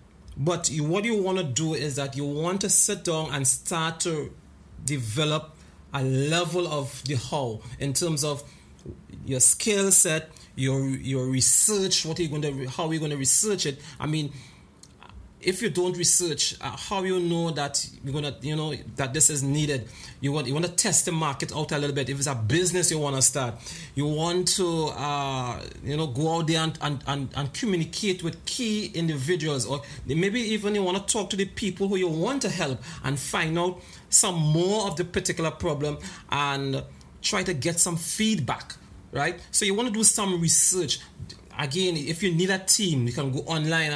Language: English